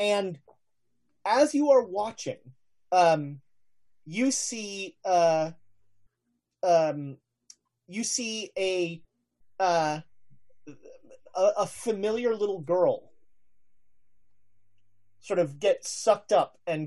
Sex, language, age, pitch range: male, English, 30-49, 140-210 Hz